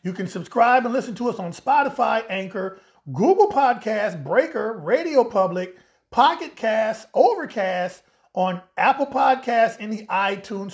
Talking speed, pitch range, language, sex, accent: 135 wpm, 205-265 Hz, English, male, American